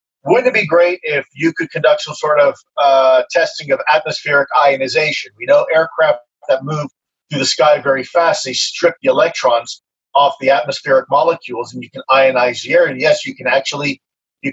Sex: male